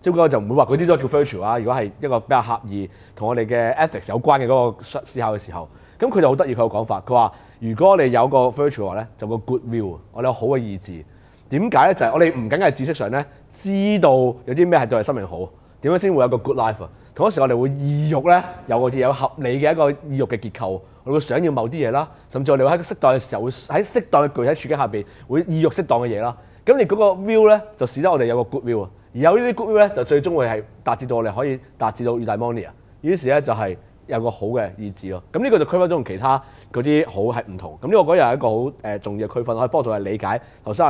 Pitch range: 115-155 Hz